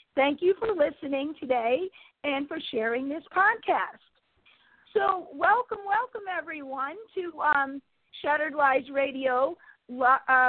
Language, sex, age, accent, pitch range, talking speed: English, female, 50-69, American, 260-315 Hz, 115 wpm